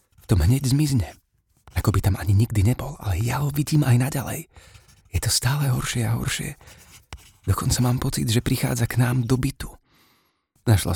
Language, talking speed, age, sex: Slovak, 170 wpm, 30-49, male